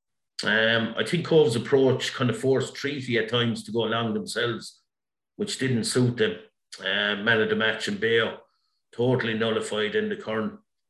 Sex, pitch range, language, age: male, 110-125 Hz, English, 50-69